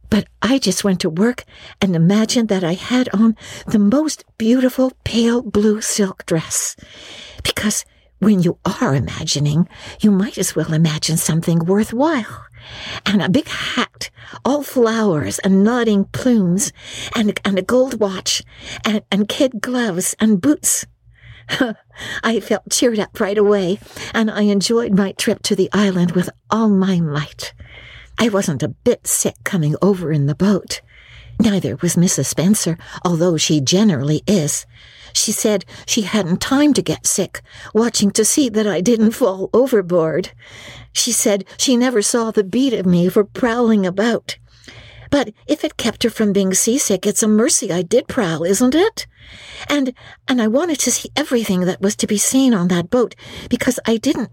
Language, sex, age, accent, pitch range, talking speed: English, female, 60-79, American, 180-235 Hz, 165 wpm